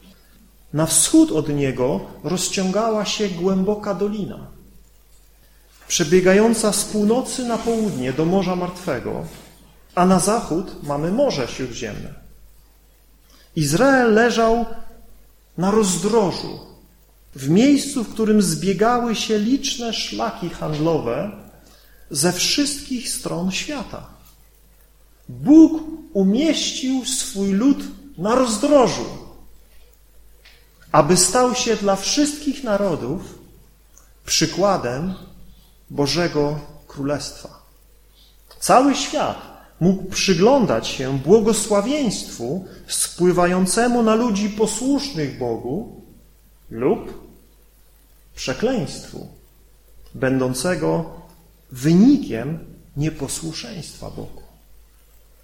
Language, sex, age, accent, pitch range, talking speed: Polish, male, 40-59, native, 160-230 Hz, 75 wpm